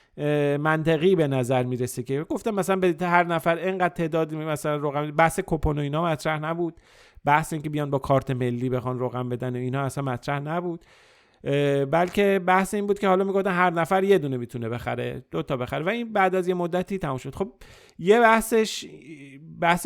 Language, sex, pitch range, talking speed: Persian, male, 130-170 Hz, 185 wpm